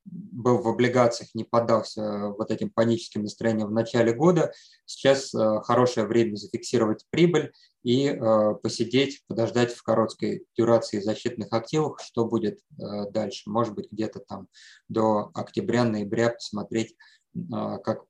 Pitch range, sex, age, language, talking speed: 110-125 Hz, male, 20-39, Russian, 125 wpm